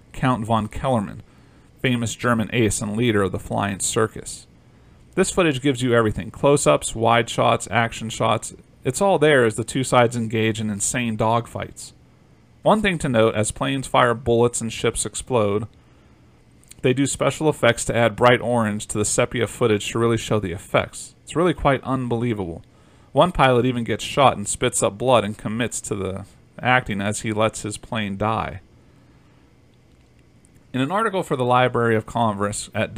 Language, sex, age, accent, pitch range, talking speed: English, male, 40-59, American, 110-125 Hz, 170 wpm